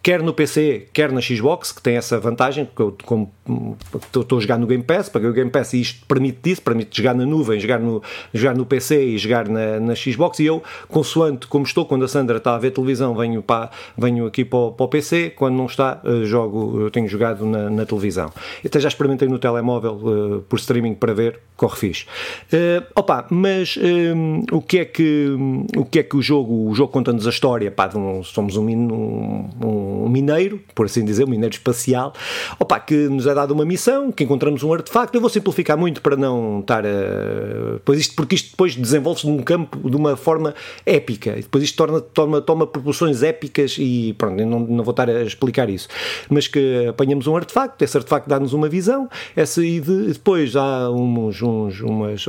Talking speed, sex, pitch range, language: 190 wpm, male, 120-155 Hz, Portuguese